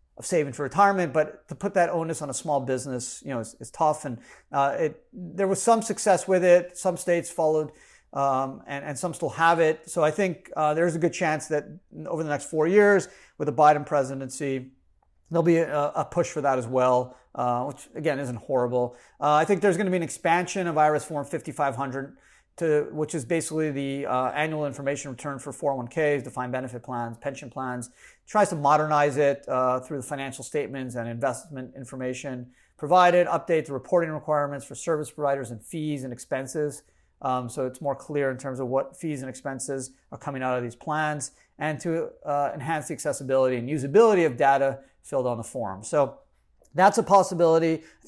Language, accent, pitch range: English, American, 135-170 Hz